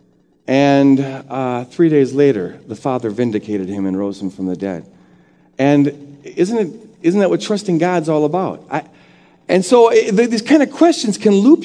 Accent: American